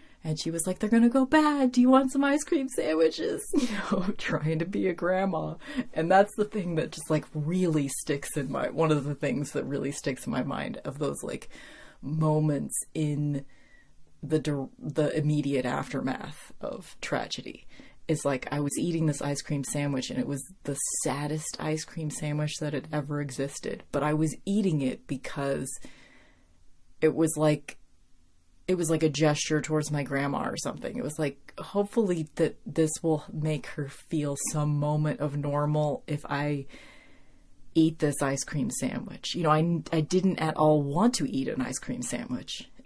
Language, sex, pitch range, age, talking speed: English, female, 145-185 Hz, 30-49, 180 wpm